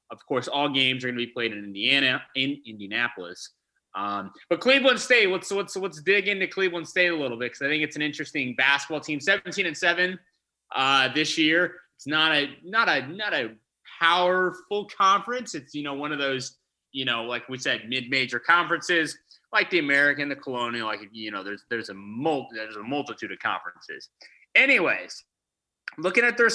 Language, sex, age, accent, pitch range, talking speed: English, male, 30-49, American, 130-190 Hz, 190 wpm